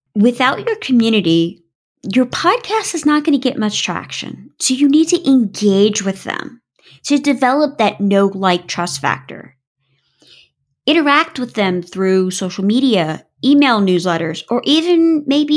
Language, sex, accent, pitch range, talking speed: English, female, American, 200-285 Hz, 145 wpm